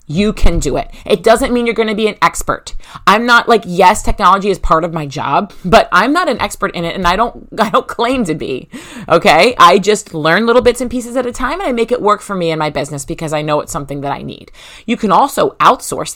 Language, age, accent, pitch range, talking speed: English, 30-49, American, 160-230 Hz, 260 wpm